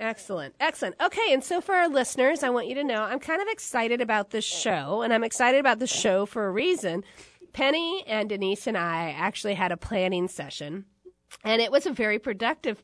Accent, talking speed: American, 210 wpm